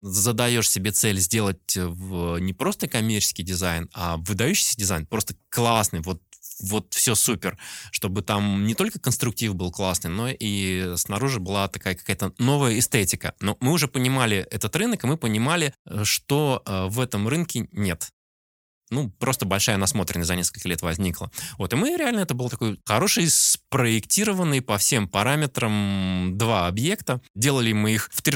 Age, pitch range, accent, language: 20-39, 95-130 Hz, native, Russian